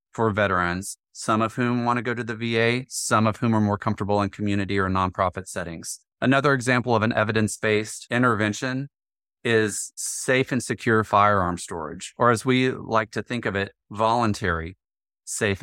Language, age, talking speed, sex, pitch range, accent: English, 30-49, 170 wpm, male, 100-120 Hz, American